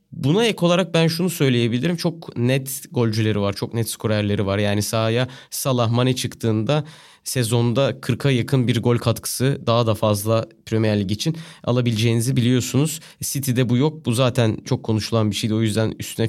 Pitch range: 115-150 Hz